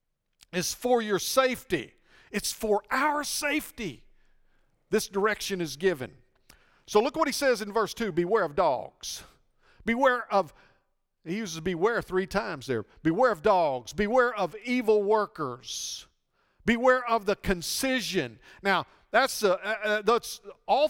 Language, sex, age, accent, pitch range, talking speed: English, male, 50-69, American, 165-230 Hz, 140 wpm